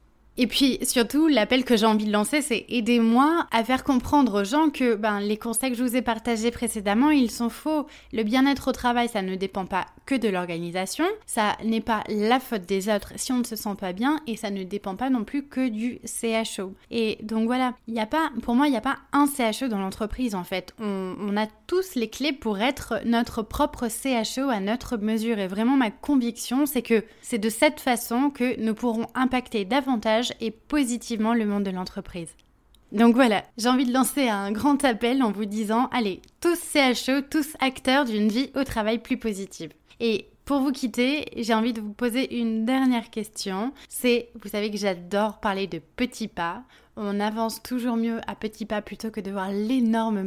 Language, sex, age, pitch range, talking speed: French, female, 20-39, 215-255 Hz, 205 wpm